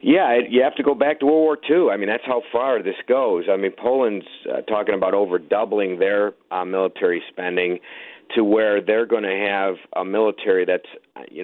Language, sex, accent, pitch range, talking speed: English, male, American, 95-150 Hz, 205 wpm